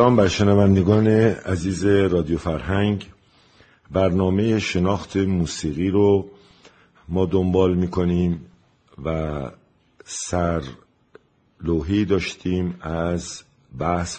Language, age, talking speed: Persian, 50-69, 80 wpm